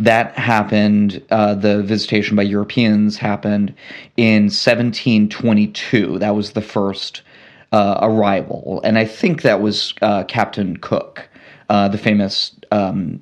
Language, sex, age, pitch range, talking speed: English, male, 30-49, 105-110 Hz, 125 wpm